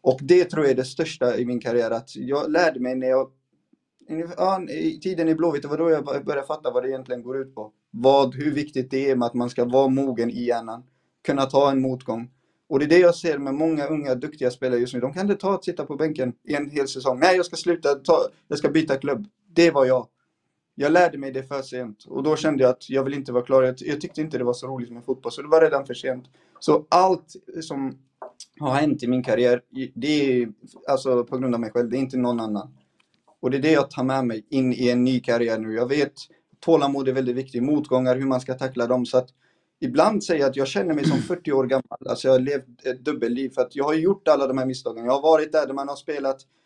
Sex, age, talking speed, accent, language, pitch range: male, 30-49, 250 wpm, native, Swedish, 125-150 Hz